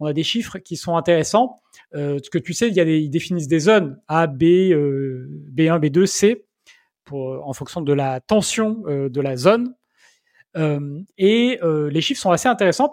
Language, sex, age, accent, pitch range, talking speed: French, male, 40-59, French, 155-205 Hz, 210 wpm